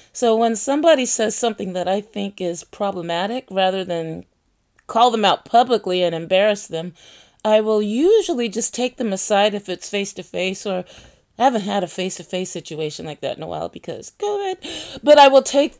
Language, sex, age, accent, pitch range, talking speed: English, female, 30-49, American, 180-250 Hz, 180 wpm